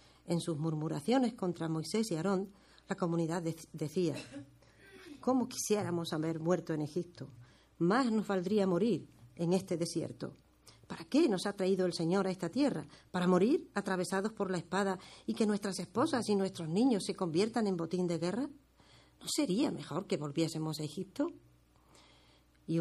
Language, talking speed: Spanish, 160 wpm